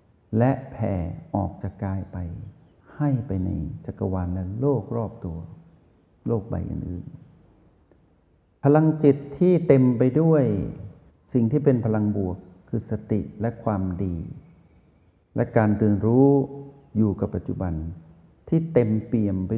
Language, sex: Thai, male